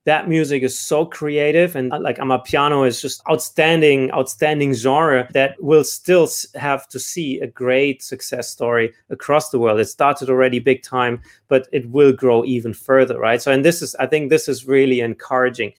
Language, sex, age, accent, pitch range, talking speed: English, male, 30-49, German, 125-140 Hz, 180 wpm